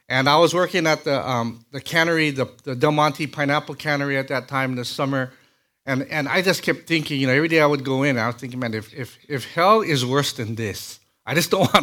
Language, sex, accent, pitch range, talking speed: English, male, American, 125-155 Hz, 260 wpm